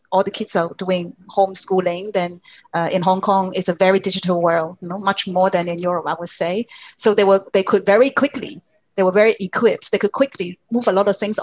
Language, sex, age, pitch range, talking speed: English, female, 30-49, 180-210 Hz, 235 wpm